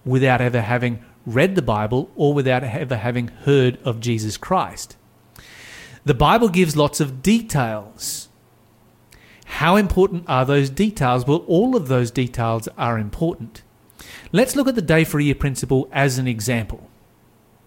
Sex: male